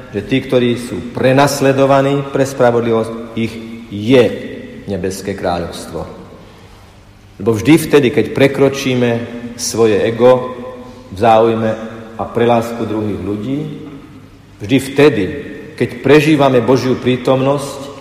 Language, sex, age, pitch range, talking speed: Slovak, male, 50-69, 105-130 Hz, 100 wpm